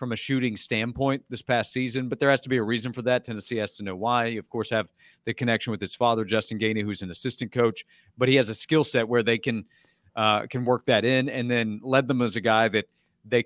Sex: male